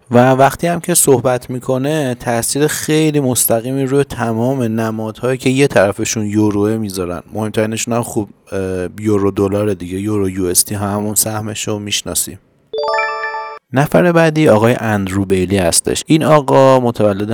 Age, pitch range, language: 30-49, 100-125 Hz, Persian